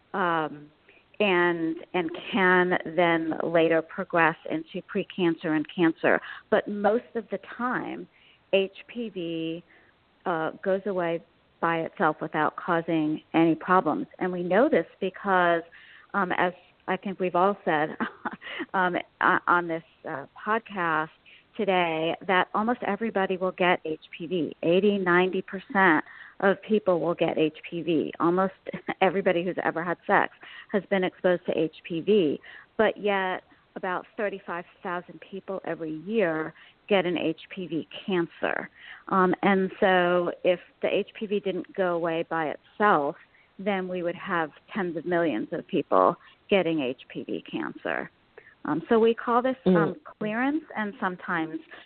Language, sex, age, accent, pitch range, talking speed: English, female, 40-59, American, 165-195 Hz, 130 wpm